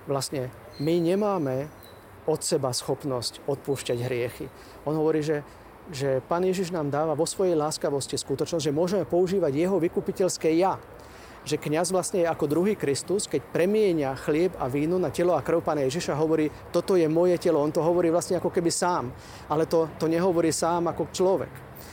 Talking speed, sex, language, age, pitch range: 170 wpm, male, Slovak, 40-59, 140-175 Hz